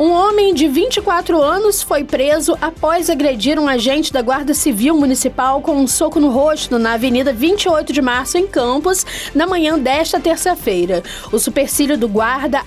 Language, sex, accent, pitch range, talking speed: Portuguese, female, Brazilian, 255-330 Hz, 165 wpm